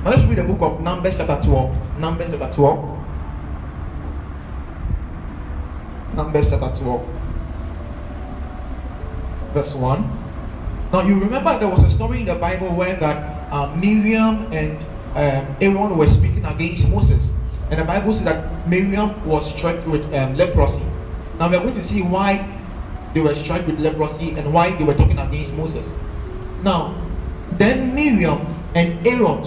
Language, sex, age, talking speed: English, male, 30-49, 150 wpm